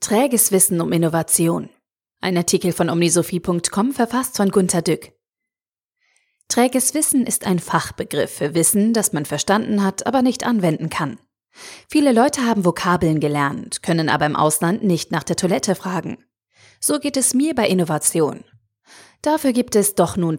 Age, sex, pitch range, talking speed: 30-49, female, 170-230 Hz, 155 wpm